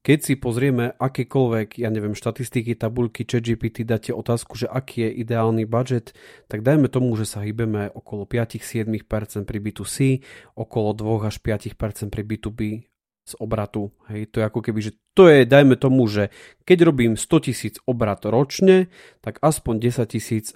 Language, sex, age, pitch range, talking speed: Slovak, male, 40-59, 110-145 Hz, 160 wpm